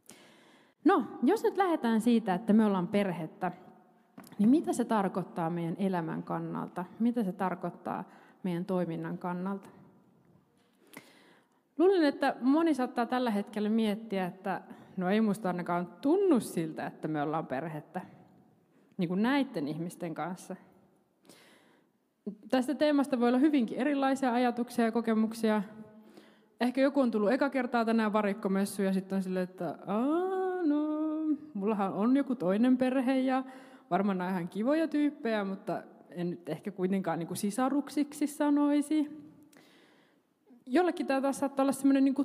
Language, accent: Finnish, native